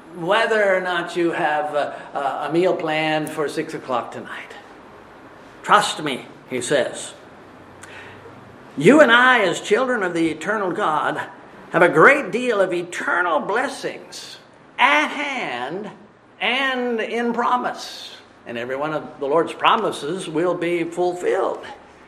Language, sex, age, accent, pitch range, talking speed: English, male, 50-69, American, 175-250 Hz, 130 wpm